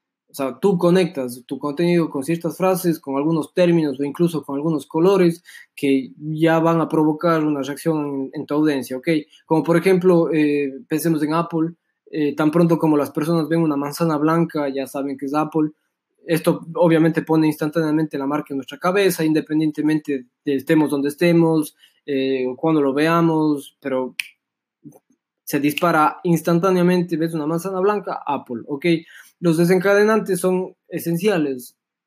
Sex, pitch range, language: male, 150-175 Hz, Spanish